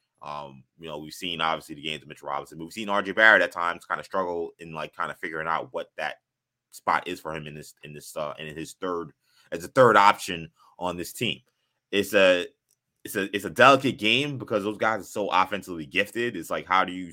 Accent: American